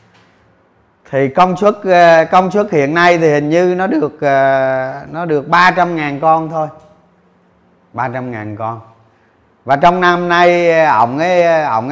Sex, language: male, Vietnamese